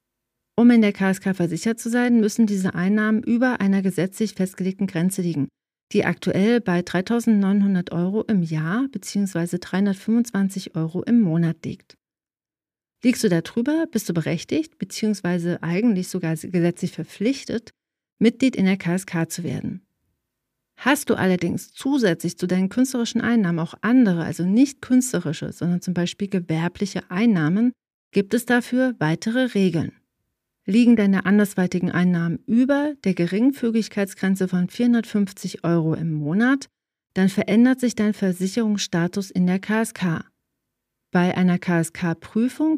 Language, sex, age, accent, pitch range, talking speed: German, female, 40-59, German, 175-225 Hz, 130 wpm